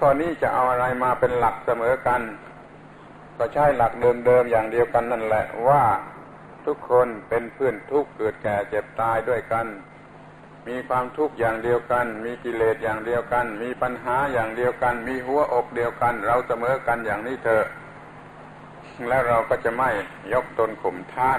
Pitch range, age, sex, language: 115-125 Hz, 60-79, male, Thai